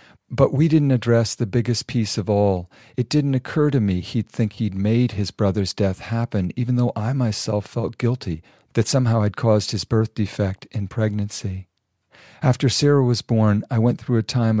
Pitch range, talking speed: 100-120 Hz, 190 wpm